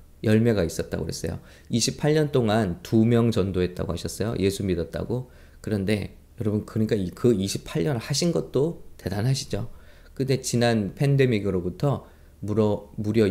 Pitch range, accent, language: 95-135 Hz, Korean, English